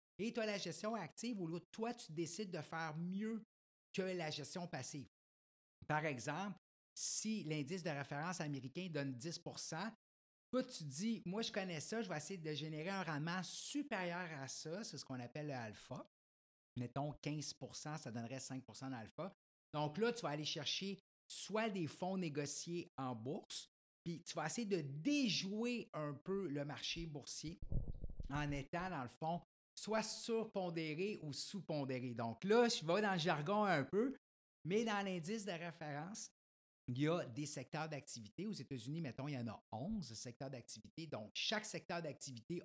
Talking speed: 170 wpm